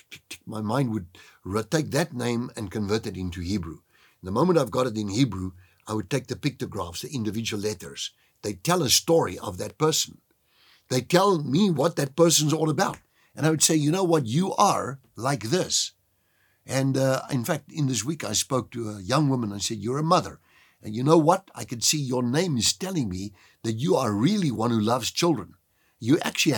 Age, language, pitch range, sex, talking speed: 60-79, English, 105-155 Hz, male, 210 wpm